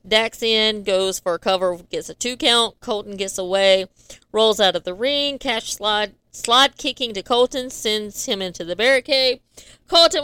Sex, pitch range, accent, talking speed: female, 200-255 Hz, American, 175 wpm